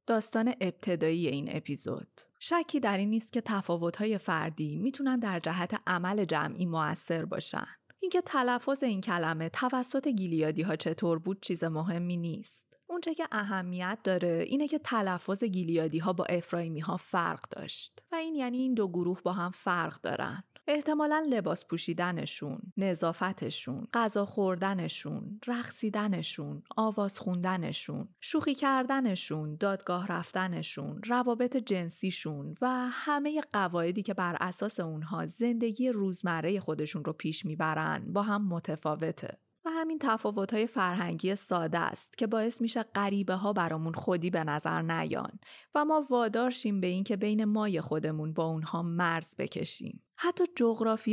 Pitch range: 170-235 Hz